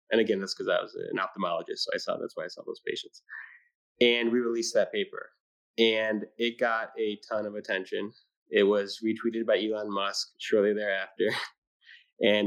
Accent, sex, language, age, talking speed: American, male, English, 20-39, 185 wpm